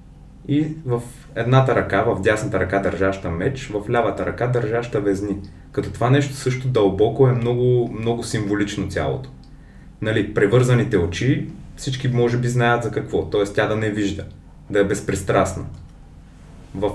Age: 20-39